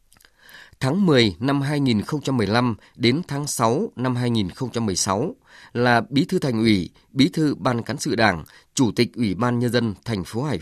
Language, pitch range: Vietnamese, 110-135 Hz